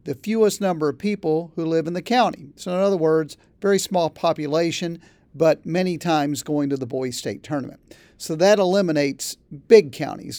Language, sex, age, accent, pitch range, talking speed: English, male, 50-69, American, 145-195 Hz, 180 wpm